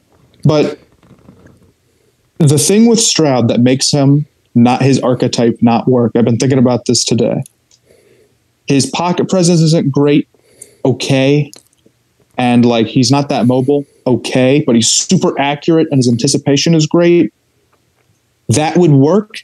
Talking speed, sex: 135 wpm, male